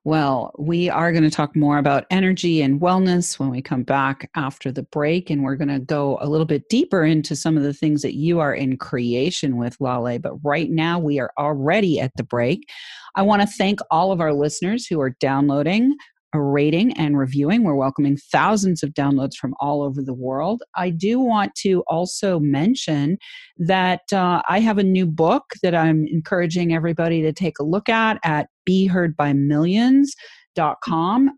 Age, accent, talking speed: 40-59, American, 185 wpm